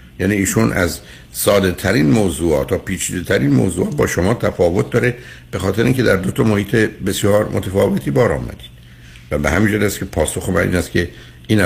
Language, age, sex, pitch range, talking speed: Persian, 60-79, male, 75-100 Hz, 185 wpm